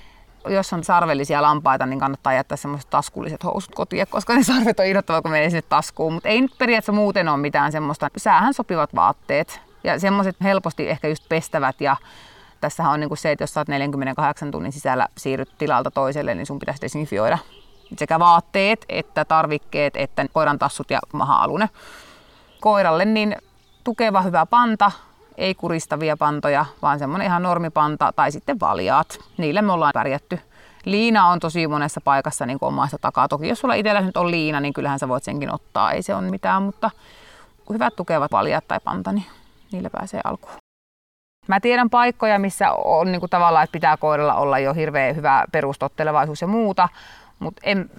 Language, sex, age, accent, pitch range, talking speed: Finnish, female, 30-49, native, 145-200 Hz, 170 wpm